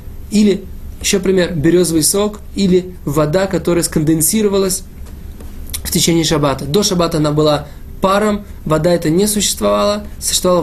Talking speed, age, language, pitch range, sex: 125 wpm, 20-39, Russian, 160-195 Hz, male